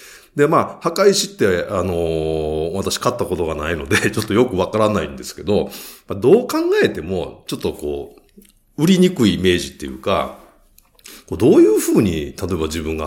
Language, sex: Japanese, male